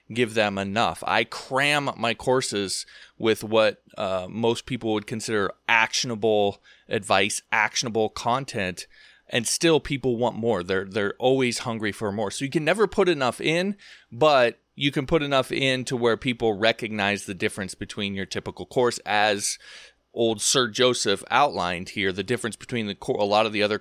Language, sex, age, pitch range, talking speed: English, male, 30-49, 105-140 Hz, 170 wpm